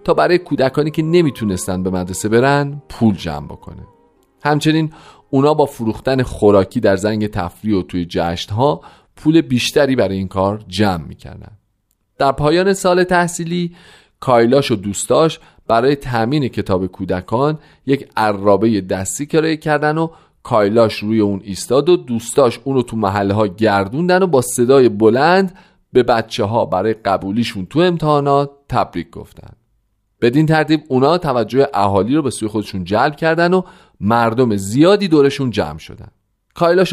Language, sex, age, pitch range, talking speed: Persian, male, 40-59, 100-150 Hz, 140 wpm